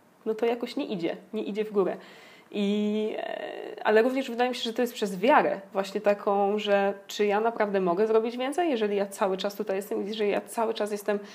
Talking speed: 215 wpm